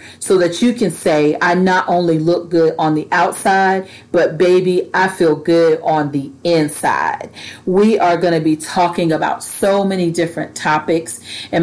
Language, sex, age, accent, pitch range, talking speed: English, female, 40-59, American, 155-190 Hz, 165 wpm